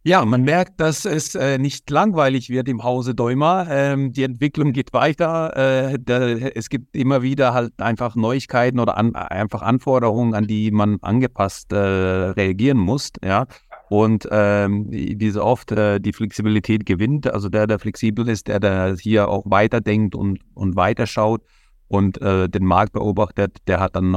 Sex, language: male, German